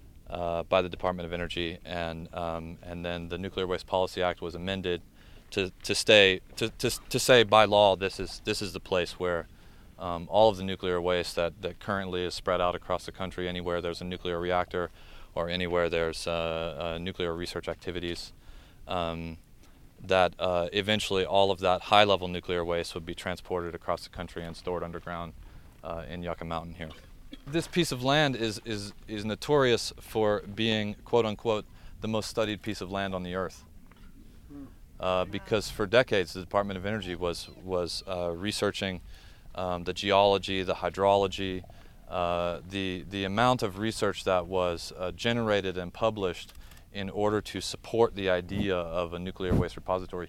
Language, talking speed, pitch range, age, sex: English, 175 wpm, 85-100 Hz, 30-49, male